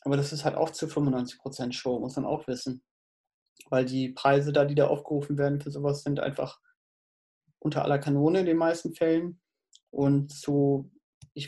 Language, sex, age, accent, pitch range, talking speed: German, male, 30-49, German, 140-160 Hz, 180 wpm